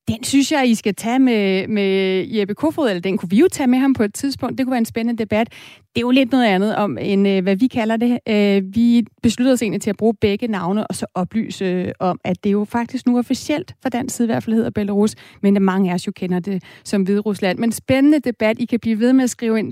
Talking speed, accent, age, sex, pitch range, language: 260 wpm, native, 30-49, female, 200-240 Hz, Danish